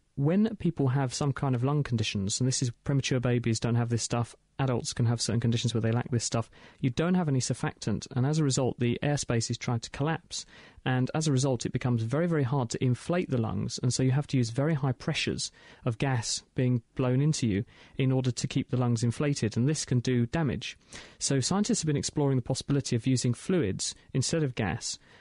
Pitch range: 115-140 Hz